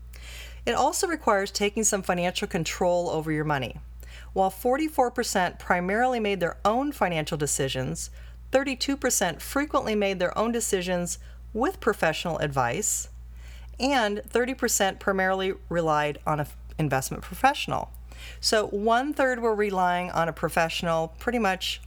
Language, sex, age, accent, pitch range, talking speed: English, female, 40-59, American, 150-205 Hz, 120 wpm